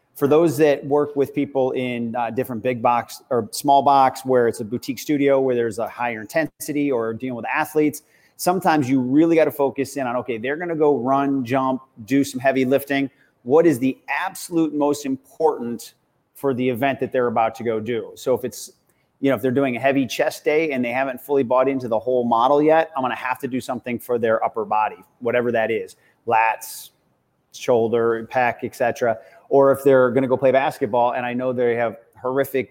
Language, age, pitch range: English, 30-49, 120-140 Hz